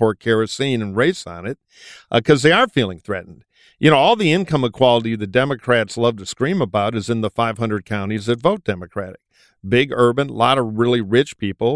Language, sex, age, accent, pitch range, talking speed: English, male, 50-69, American, 105-130 Hz, 205 wpm